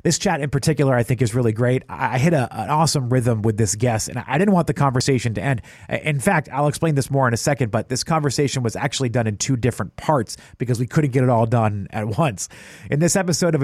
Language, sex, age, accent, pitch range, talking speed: English, male, 30-49, American, 120-150 Hz, 255 wpm